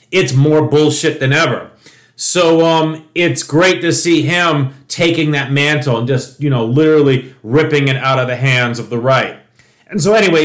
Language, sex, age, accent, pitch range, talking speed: English, male, 30-49, American, 135-175 Hz, 185 wpm